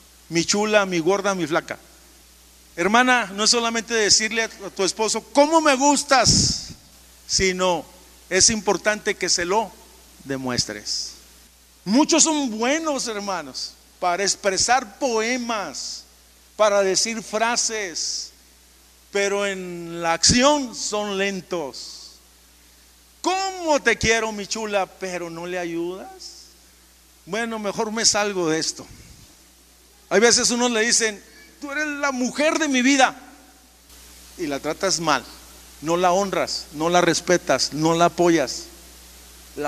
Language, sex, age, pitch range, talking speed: Spanish, male, 50-69, 155-230 Hz, 120 wpm